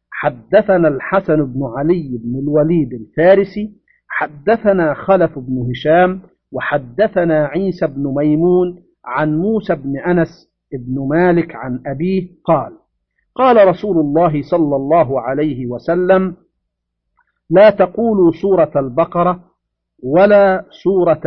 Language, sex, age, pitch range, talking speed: Arabic, male, 50-69, 145-185 Hz, 105 wpm